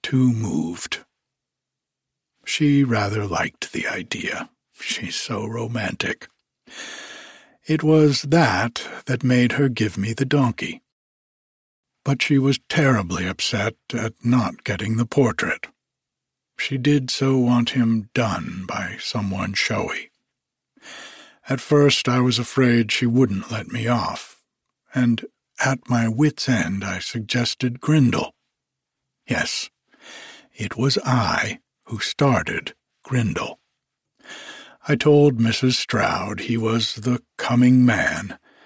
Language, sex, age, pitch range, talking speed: English, male, 60-79, 115-135 Hz, 110 wpm